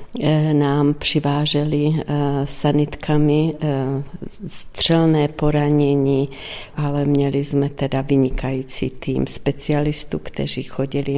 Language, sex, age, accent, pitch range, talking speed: Czech, female, 50-69, native, 140-155 Hz, 75 wpm